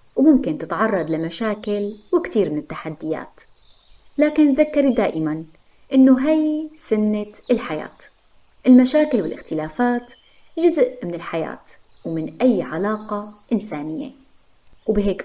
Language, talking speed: Arabic, 90 wpm